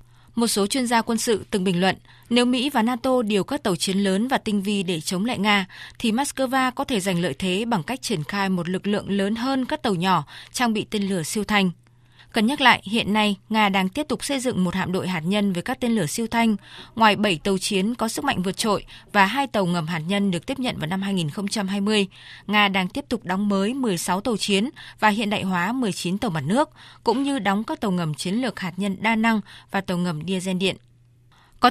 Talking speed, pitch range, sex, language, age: 240 wpm, 185-230 Hz, female, Vietnamese, 20-39